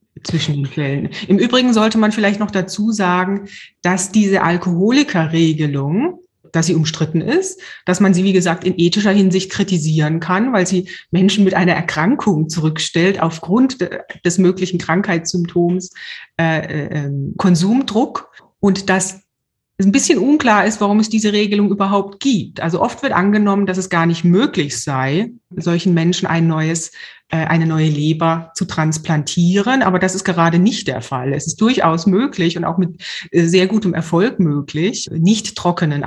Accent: German